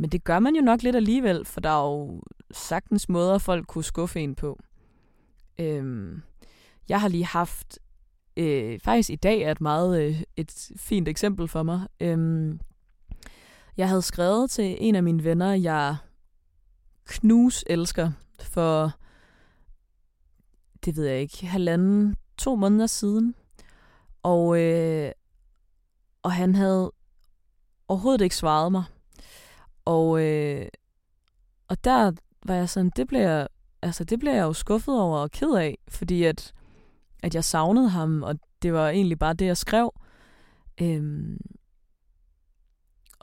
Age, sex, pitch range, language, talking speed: 20-39, female, 150-195 Hz, Danish, 140 wpm